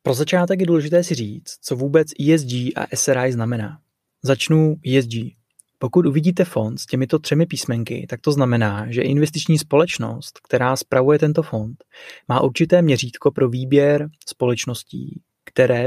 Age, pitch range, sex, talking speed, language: 20-39, 120-145 Hz, male, 145 wpm, Czech